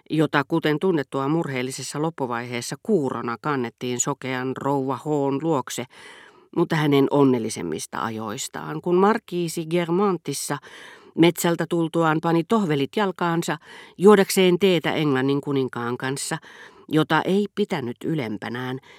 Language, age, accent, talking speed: Finnish, 40-59, native, 100 wpm